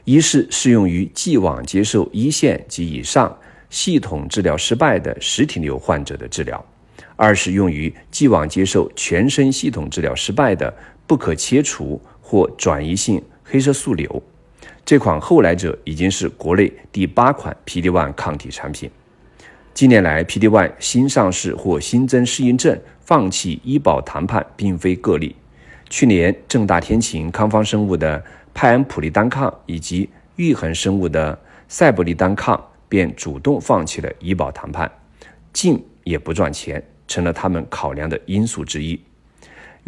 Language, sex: Chinese, male